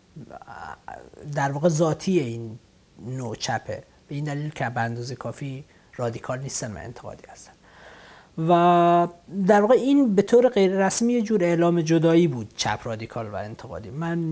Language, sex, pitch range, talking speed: English, male, 120-170 Hz, 140 wpm